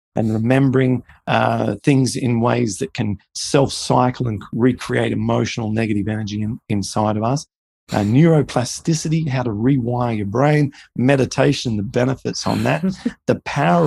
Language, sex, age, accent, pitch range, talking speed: English, male, 40-59, Australian, 110-145 Hz, 140 wpm